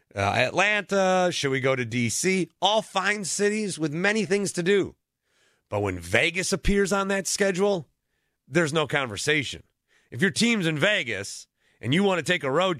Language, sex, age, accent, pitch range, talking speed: English, male, 30-49, American, 125-170 Hz, 175 wpm